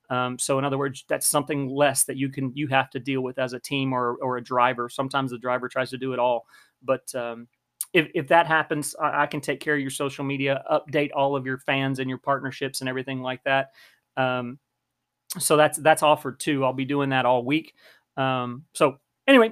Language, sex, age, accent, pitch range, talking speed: English, male, 40-59, American, 130-150 Hz, 220 wpm